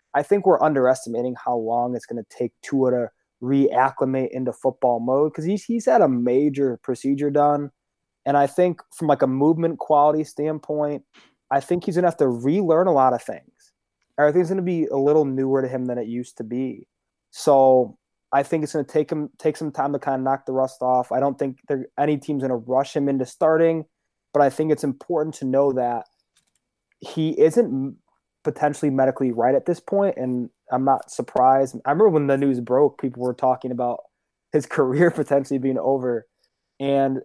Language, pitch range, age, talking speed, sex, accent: English, 125-150 Hz, 20-39, 200 wpm, male, American